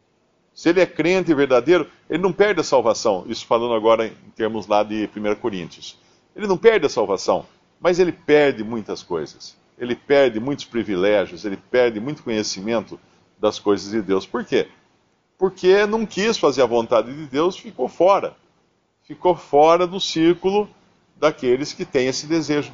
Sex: male